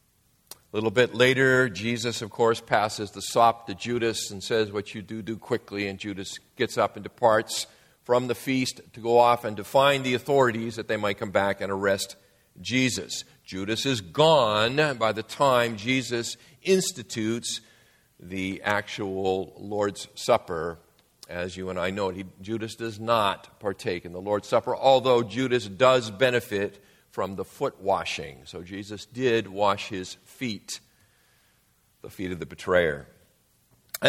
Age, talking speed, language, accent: 50-69, 155 wpm, English, American